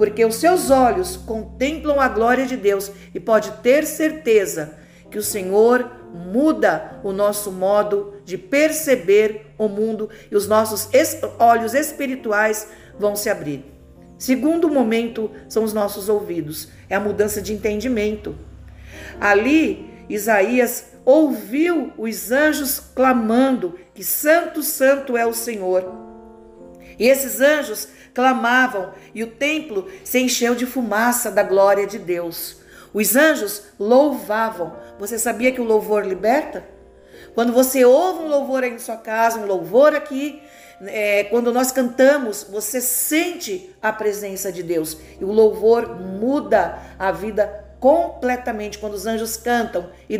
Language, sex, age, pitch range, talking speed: Portuguese, female, 50-69, 205-260 Hz, 135 wpm